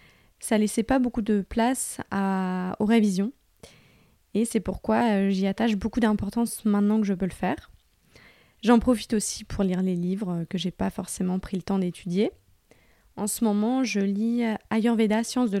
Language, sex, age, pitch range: French, female, 20-39, 200-235 Hz